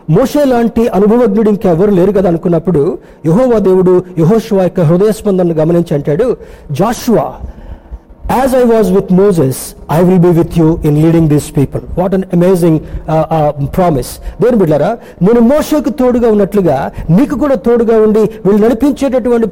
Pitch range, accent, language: 170-225 Hz, native, Telugu